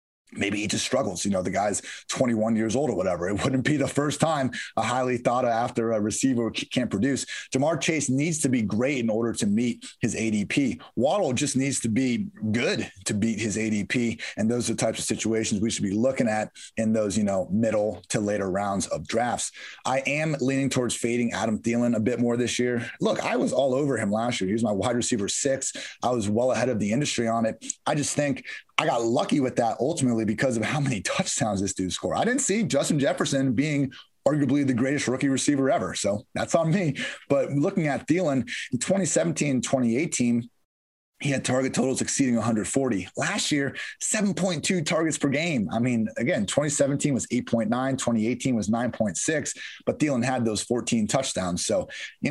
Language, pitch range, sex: English, 110-140 Hz, male